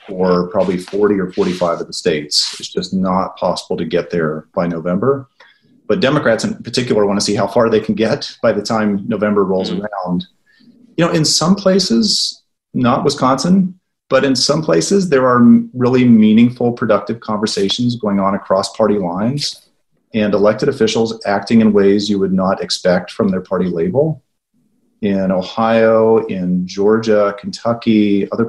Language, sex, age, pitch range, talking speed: English, male, 40-59, 105-125 Hz, 160 wpm